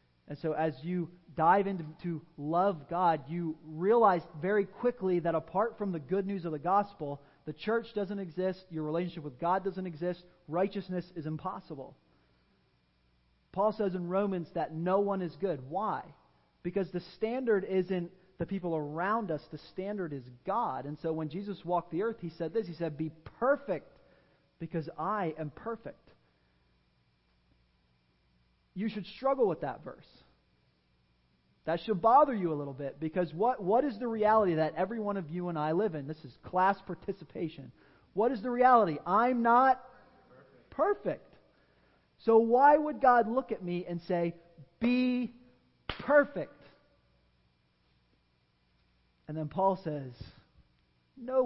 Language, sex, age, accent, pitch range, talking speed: English, male, 30-49, American, 140-200 Hz, 150 wpm